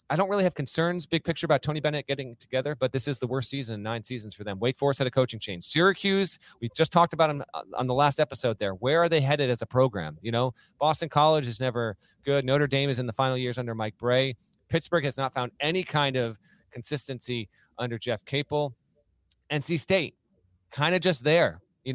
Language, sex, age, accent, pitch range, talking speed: English, male, 30-49, American, 120-155 Hz, 225 wpm